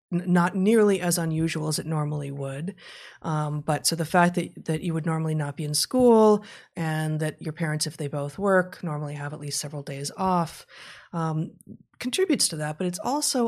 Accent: American